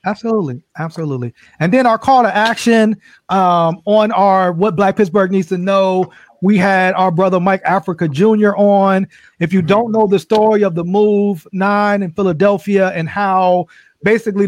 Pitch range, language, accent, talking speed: 180-205 Hz, English, American, 165 wpm